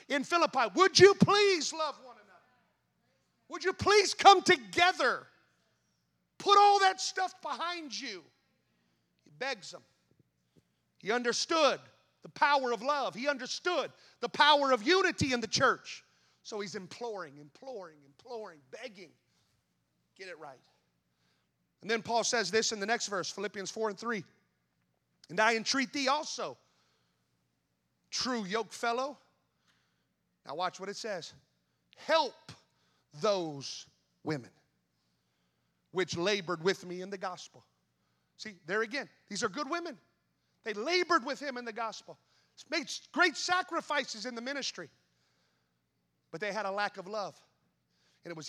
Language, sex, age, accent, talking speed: English, male, 40-59, American, 140 wpm